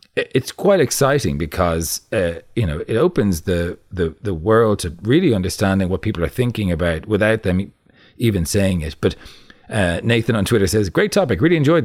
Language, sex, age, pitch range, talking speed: English, male, 40-59, 90-115 Hz, 180 wpm